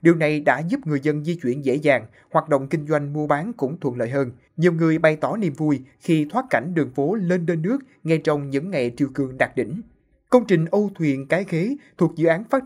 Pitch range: 140-175 Hz